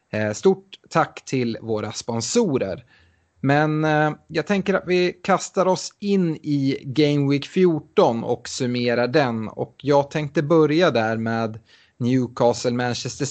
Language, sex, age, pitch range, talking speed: Swedish, male, 30-49, 115-150 Hz, 125 wpm